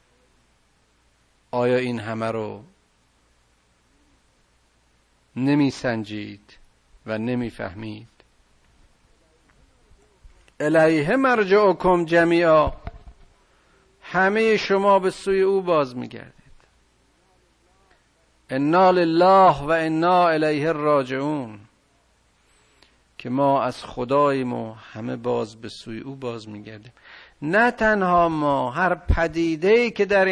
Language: Persian